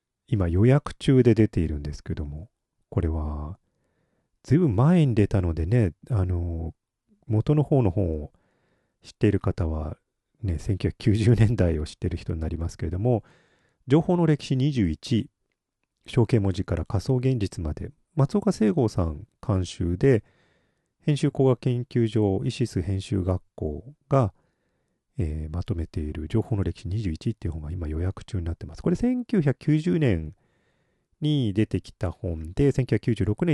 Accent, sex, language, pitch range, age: native, male, Japanese, 90-130 Hz, 40-59